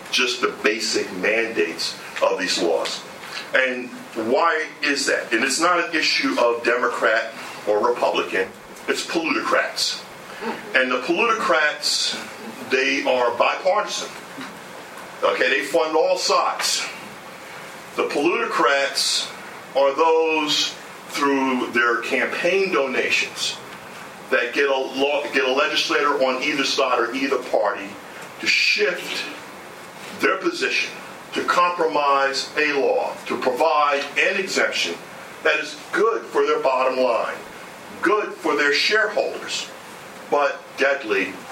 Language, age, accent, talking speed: English, 50-69, American, 115 wpm